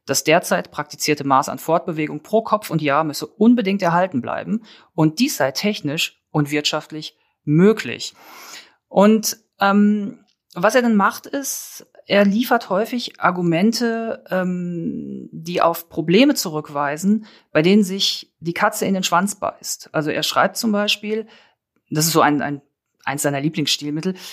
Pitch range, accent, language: 155-210 Hz, German, German